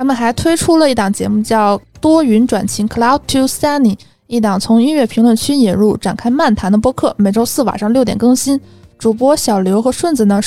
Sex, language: female, Chinese